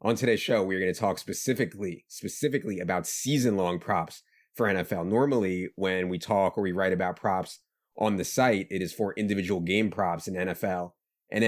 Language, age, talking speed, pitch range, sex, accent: English, 30-49, 185 wpm, 95-105 Hz, male, American